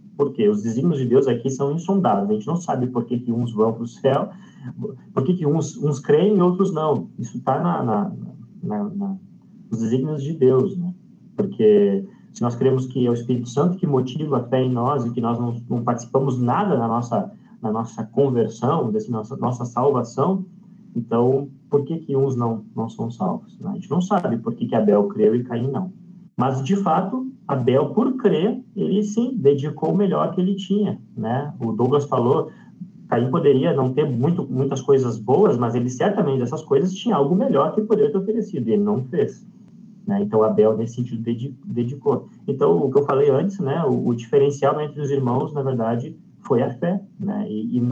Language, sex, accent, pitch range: Portuguese, male, Brazilian, 125-200 Hz